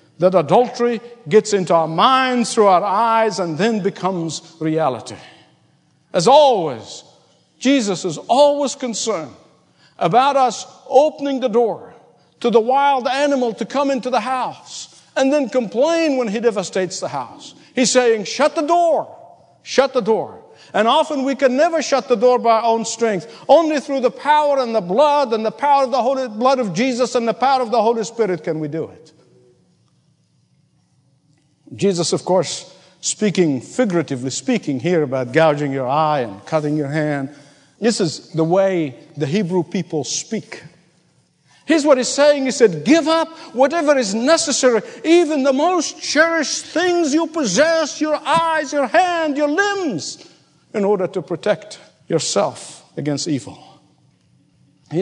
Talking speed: 155 wpm